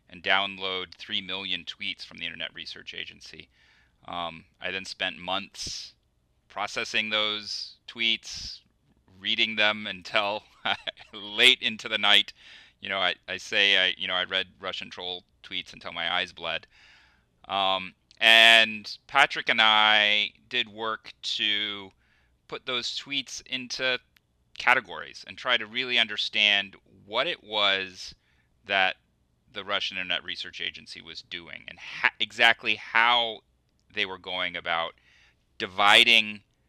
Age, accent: 30-49, American